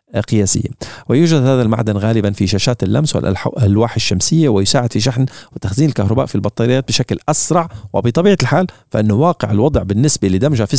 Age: 40-59